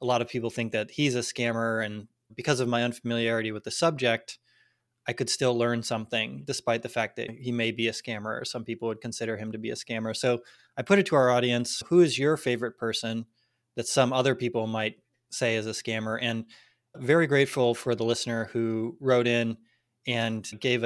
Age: 20-39